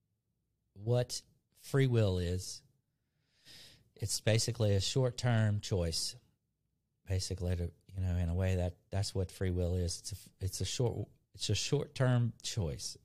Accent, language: American, English